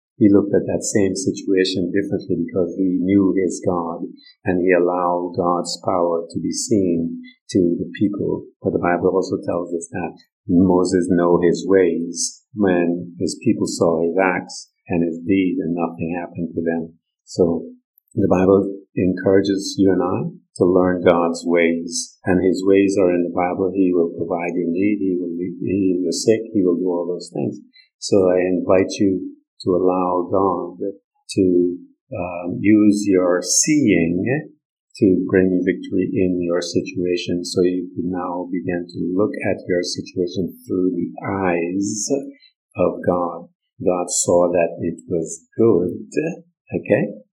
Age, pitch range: 50-69, 90-100 Hz